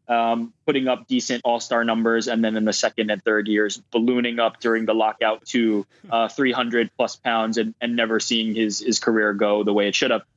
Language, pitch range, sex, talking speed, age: English, 110-120 Hz, male, 215 wpm, 20-39